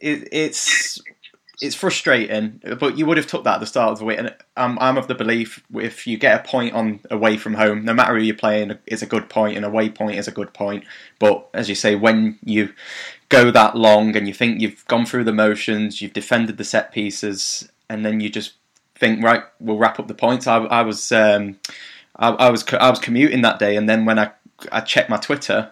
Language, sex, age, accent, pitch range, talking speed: English, male, 20-39, British, 105-125 Hz, 230 wpm